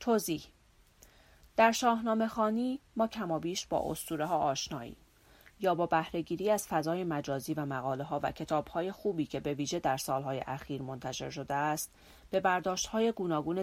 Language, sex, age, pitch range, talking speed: Persian, female, 40-59, 140-170 Hz, 155 wpm